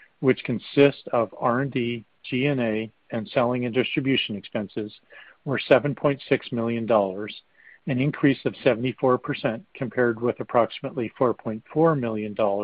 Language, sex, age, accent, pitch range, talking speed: English, male, 50-69, American, 115-145 Hz, 105 wpm